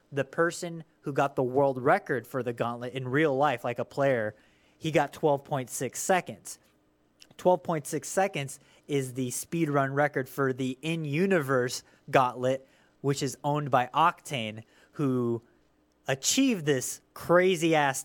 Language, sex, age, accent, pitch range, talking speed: English, male, 30-49, American, 125-160 Hz, 130 wpm